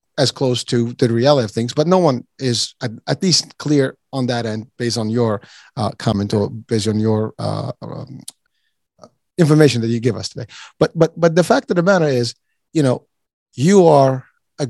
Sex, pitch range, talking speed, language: male, 120-150 Hz, 195 wpm, English